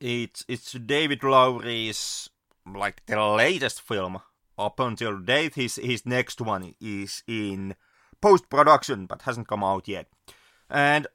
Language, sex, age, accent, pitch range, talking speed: English, male, 30-49, Finnish, 105-135 Hz, 130 wpm